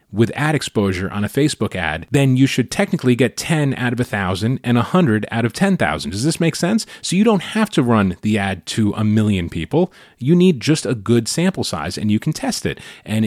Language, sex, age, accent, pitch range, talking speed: English, male, 30-49, American, 95-135 Hz, 225 wpm